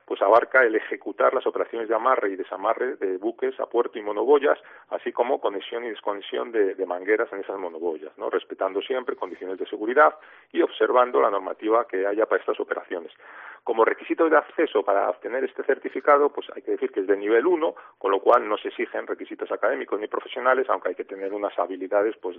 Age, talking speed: 40-59, 205 wpm